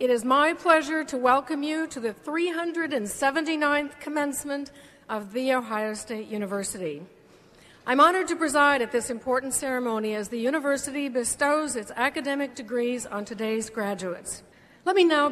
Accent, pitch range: American, 210-270 Hz